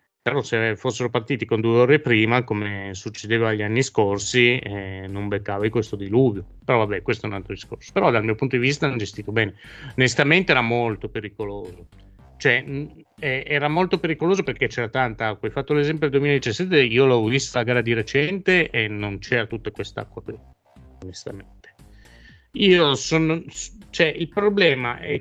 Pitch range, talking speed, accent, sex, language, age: 105-140 Hz, 170 wpm, native, male, Italian, 30-49